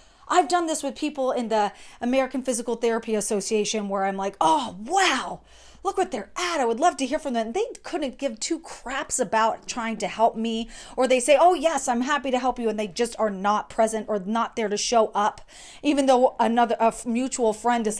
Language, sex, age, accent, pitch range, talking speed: English, female, 30-49, American, 205-300 Hz, 225 wpm